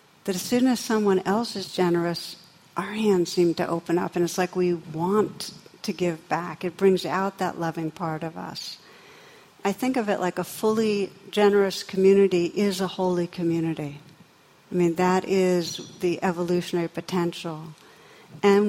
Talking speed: 165 wpm